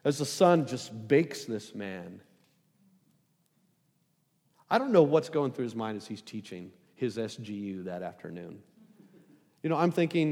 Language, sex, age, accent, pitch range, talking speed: English, male, 40-59, American, 130-190 Hz, 150 wpm